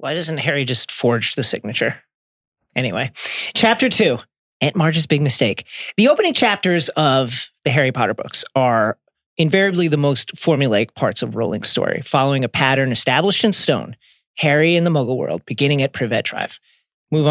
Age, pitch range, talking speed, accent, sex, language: 40-59, 135-195 Hz, 165 wpm, American, male, English